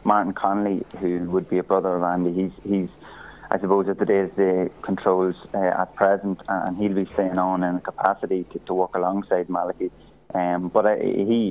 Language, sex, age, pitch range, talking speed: English, male, 20-39, 95-100 Hz, 200 wpm